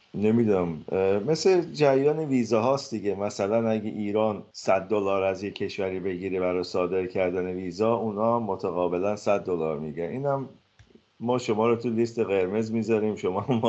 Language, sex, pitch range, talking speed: Persian, male, 95-115 Hz, 150 wpm